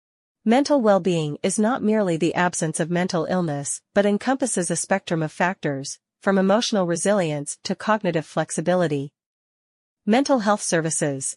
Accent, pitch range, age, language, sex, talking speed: American, 160-200 Hz, 40-59, English, female, 130 wpm